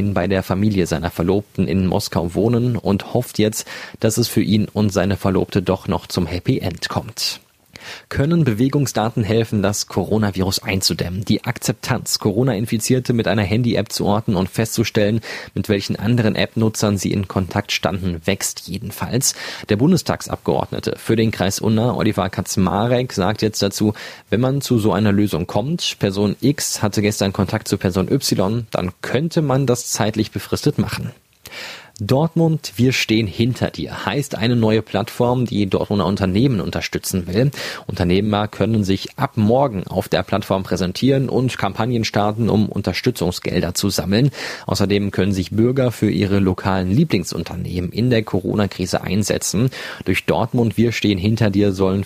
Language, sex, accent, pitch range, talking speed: German, male, German, 95-115 Hz, 150 wpm